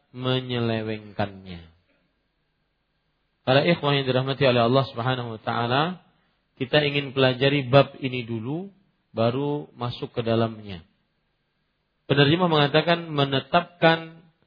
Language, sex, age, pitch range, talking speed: Malay, male, 40-59, 130-155 Hz, 95 wpm